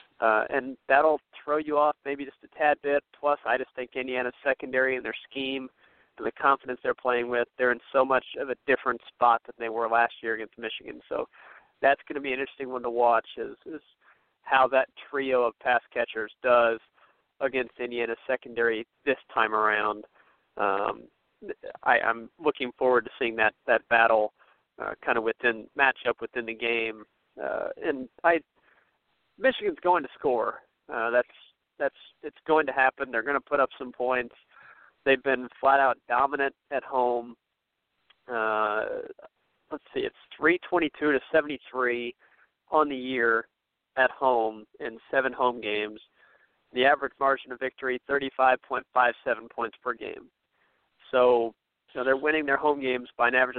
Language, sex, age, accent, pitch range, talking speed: English, male, 40-59, American, 120-140 Hz, 165 wpm